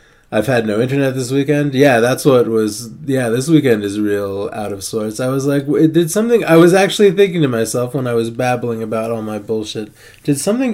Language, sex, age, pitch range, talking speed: English, male, 20-39, 105-135 Hz, 220 wpm